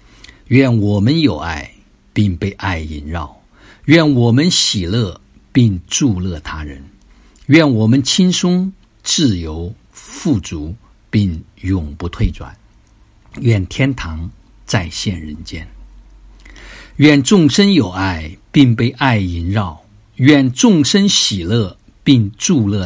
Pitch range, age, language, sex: 85-115 Hz, 50-69, Chinese, male